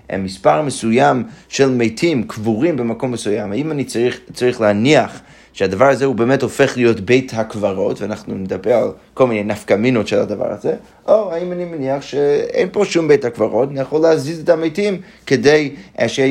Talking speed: 175 wpm